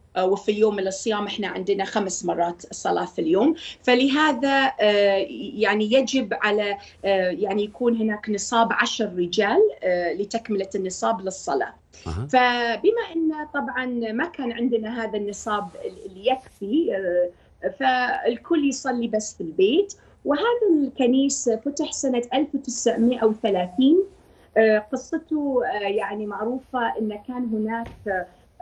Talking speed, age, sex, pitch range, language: 105 wpm, 30-49, female, 205-290 Hz, Arabic